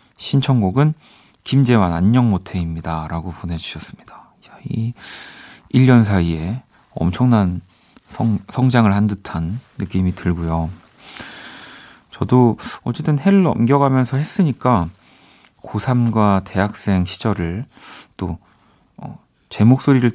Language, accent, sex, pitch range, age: Korean, native, male, 90-130 Hz, 40-59